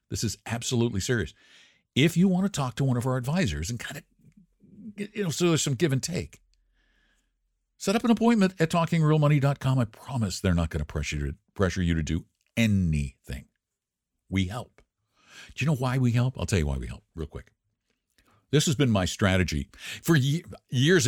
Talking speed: 190 wpm